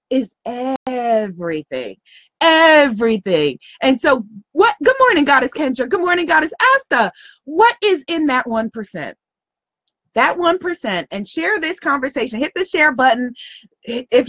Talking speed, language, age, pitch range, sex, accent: 125 wpm, English, 30-49, 205-285 Hz, female, American